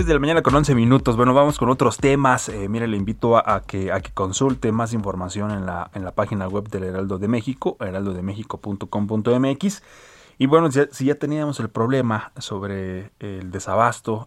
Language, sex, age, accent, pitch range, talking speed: Spanish, male, 30-49, Mexican, 100-125 Hz, 190 wpm